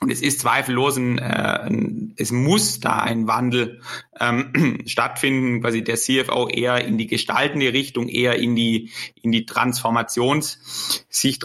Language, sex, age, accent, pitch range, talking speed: English, male, 30-49, German, 115-130 Hz, 130 wpm